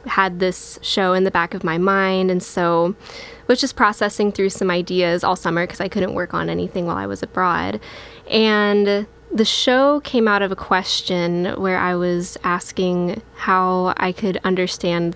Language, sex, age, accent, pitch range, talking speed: English, female, 10-29, American, 180-205 Hz, 180 wpm